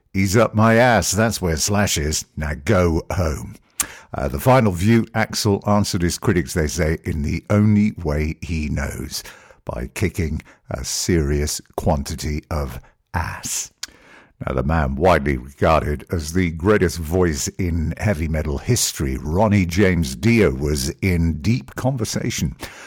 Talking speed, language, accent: 140 wpm, English, British